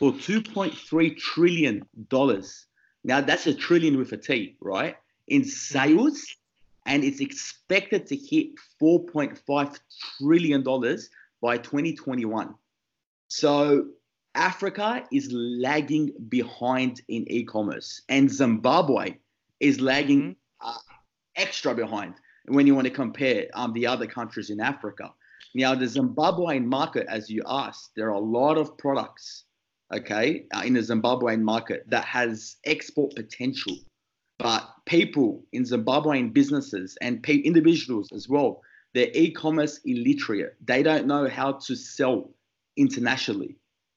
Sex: male